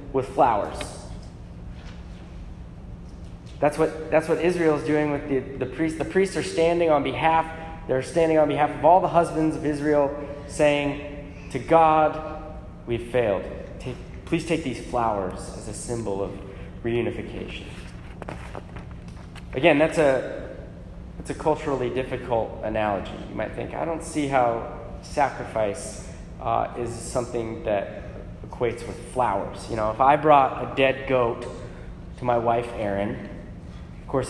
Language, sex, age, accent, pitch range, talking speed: English, male, 20-39, American, 100-155 Hz, 140 wpm